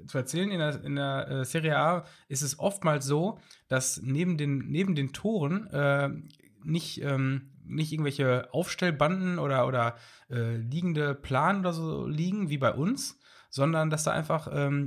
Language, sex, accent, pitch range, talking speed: German, male, German, 125-160 Hz, 150 wpm